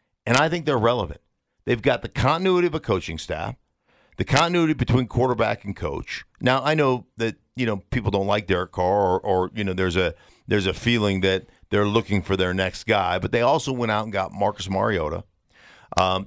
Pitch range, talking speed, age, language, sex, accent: 95-120 Hz, 205 wpm, 50-69, English, male, American